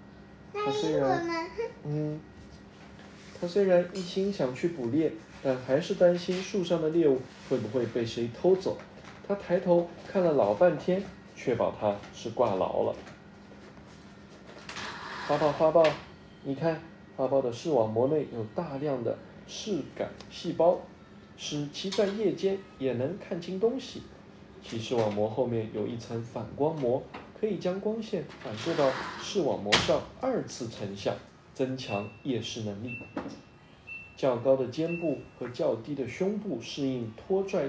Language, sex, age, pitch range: Chinese, male, 20-39, 120-185 Hz